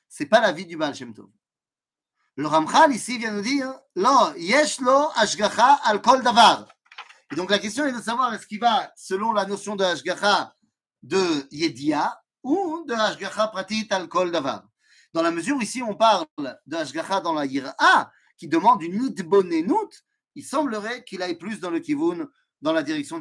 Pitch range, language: 180-300 Hz, French